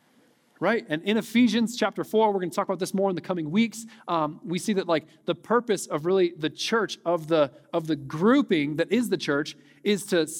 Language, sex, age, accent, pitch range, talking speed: English, male, 40-59, American, 160-215 Hz, 225 wpm